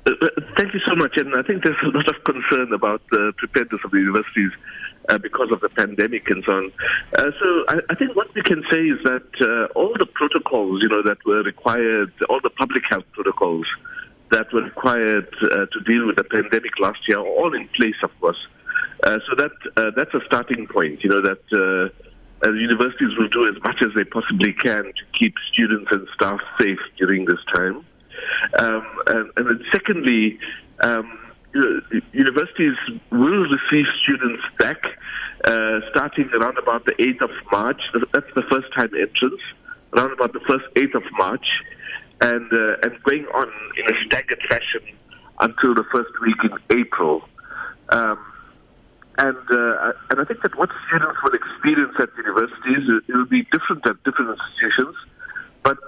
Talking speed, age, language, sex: 180 wpm, 60-79, English, male